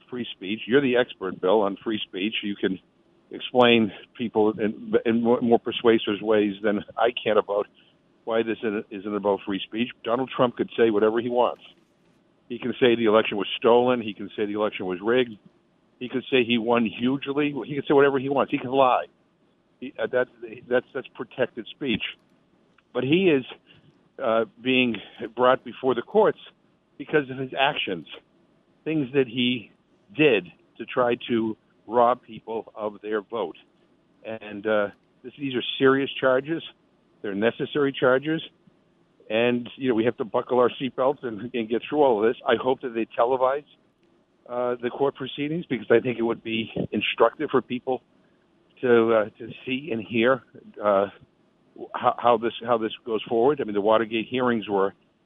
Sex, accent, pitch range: male, American, 110-130 Hz